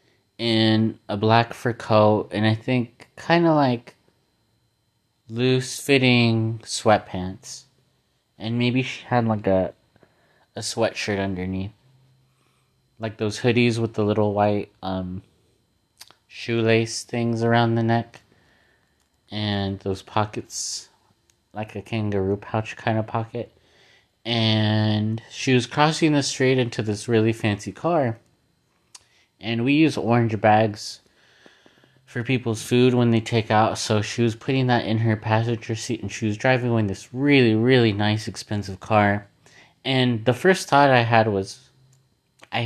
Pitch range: 110-125 Hz